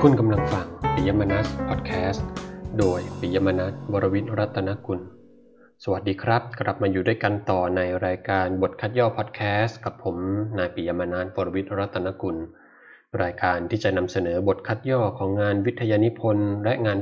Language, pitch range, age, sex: Thai, 95-115 Hz, 20-39, male